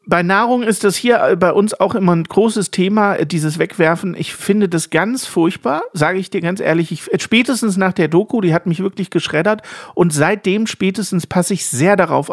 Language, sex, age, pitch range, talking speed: German, male, 50-69, 145-185 Hz, 200 wpm